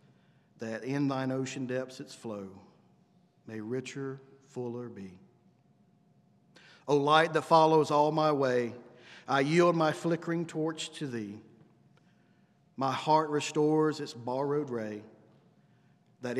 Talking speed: 115 wpm